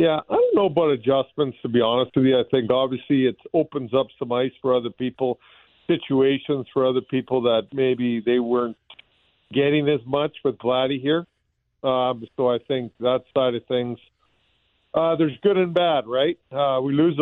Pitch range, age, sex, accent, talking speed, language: 125-145 Hz, 50-69, male, American, 185 wpm, English